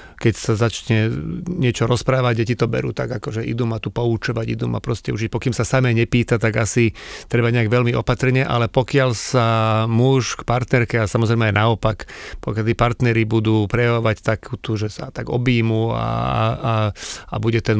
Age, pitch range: 40-59, 110-125 Hz